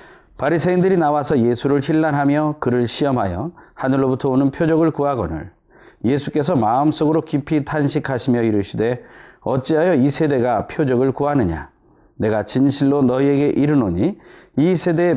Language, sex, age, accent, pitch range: Korean, male, 30-49, native, 115-150 Hz